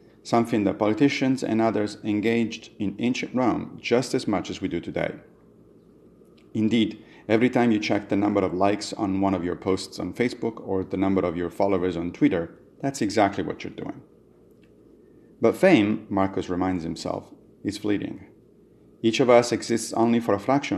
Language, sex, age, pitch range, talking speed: English, male, 40-59, 95-115 Hz, 175 wpm